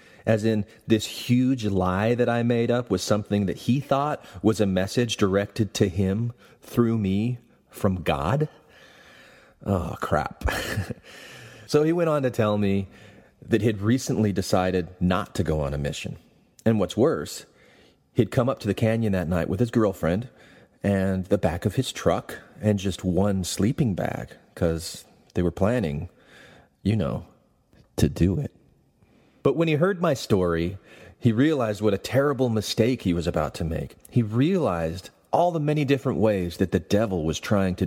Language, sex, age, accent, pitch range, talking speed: English, male, 30-49, American, 95-120 Hz, 170 wpm